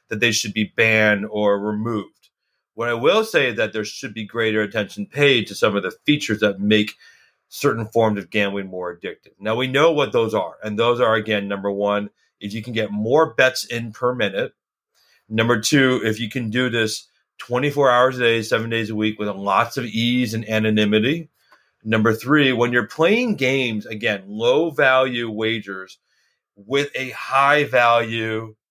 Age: 40-59